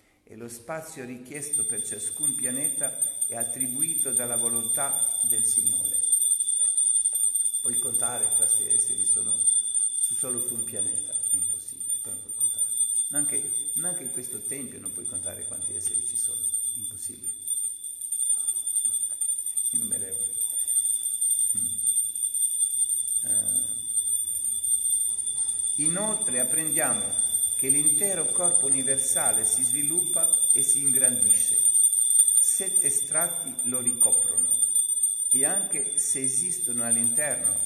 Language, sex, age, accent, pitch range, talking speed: Italian, male, 50-69, native, 105-145 Hz, 95 wpm